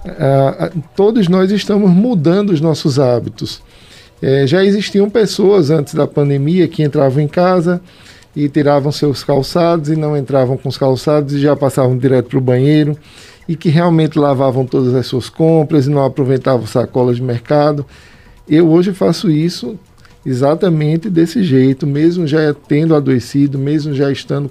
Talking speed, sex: 155 wpm, male